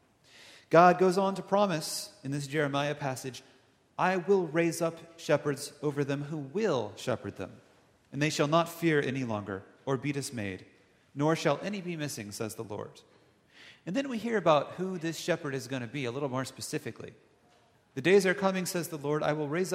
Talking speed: 195 wpm